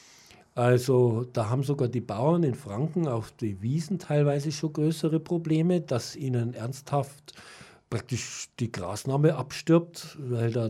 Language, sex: German, male